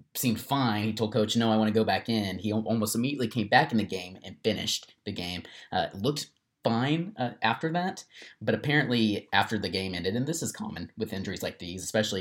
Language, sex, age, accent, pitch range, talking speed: English, male, 20-39, American, 100-115 Hz, 220 wpm